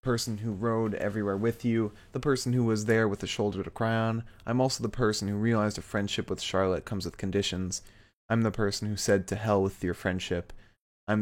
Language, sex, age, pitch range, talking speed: English, male, 20-39, 95-110 Hz, 225 wpm